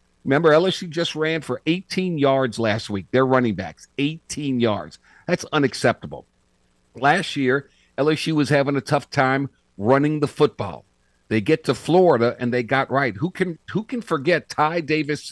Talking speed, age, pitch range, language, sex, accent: 165 wpm, 50-69, 115-160 Hz, English, male, American